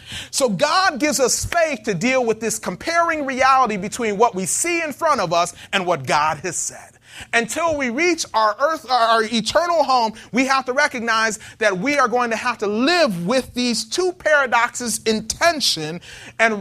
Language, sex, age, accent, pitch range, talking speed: English, male, 30-49, American, 195-270 Hz, 185 wpm